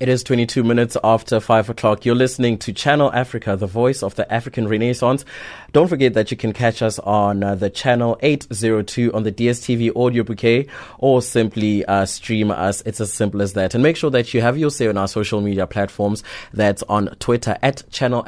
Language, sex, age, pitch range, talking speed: English, male, 20-39, 105-125 Hz, 205 wpm